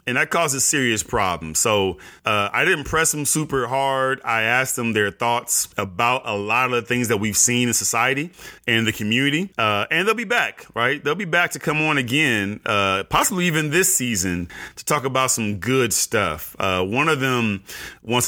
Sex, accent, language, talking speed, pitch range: male, American, English, 200 wpm, 95-130 Hz